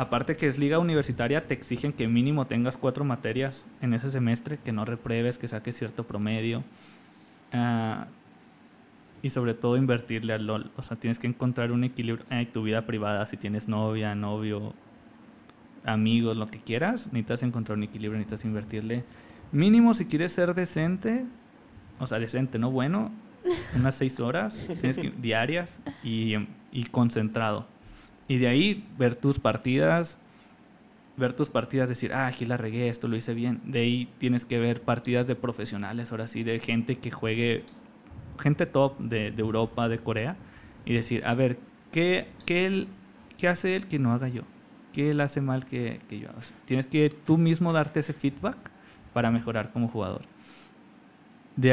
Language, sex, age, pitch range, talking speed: Spanish, male, 20-39, 115-140 Hz, 170 wpm